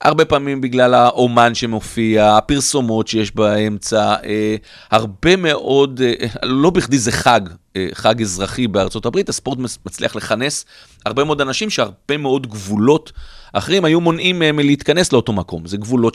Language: Hebrew